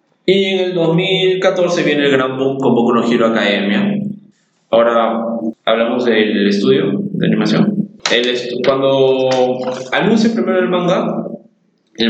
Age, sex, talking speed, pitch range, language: 20-39, male, 140 wpm, 115-145 Hz, Spanish